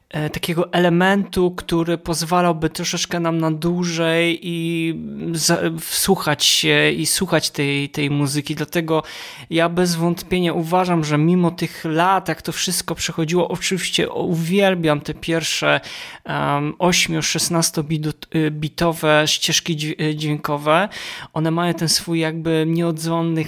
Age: 20-39